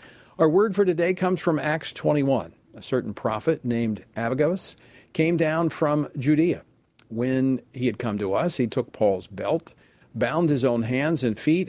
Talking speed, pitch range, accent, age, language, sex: 170 wpm, 120-165 Hz, American, 50-69, English, male